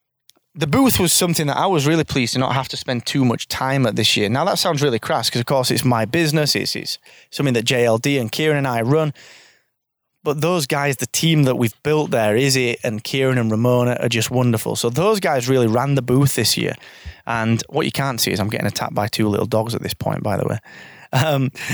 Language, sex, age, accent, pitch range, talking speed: English, male, 20-39, British, 120-155 Hz, 245 wpm